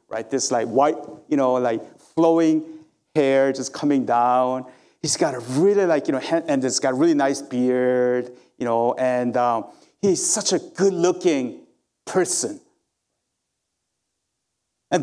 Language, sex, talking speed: English, male, 150 wpm